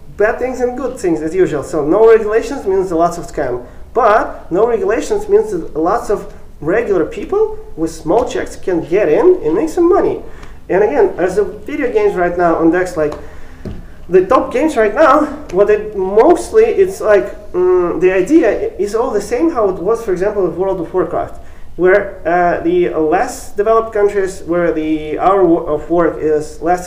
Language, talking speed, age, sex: English, 185 wpm, 30-49, male